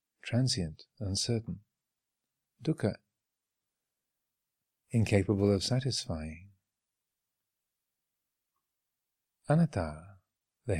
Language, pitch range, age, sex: English, 95-115 Hz, 50-69, male